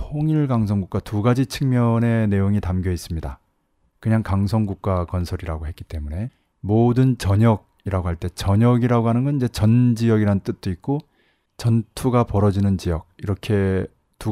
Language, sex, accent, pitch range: Korean, male, native, 95-120 Hz